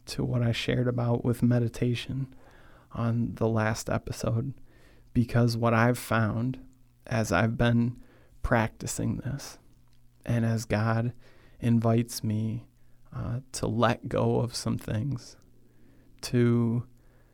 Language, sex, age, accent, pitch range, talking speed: English, male, 30-49, American, 115-125 Hz, 115 wpm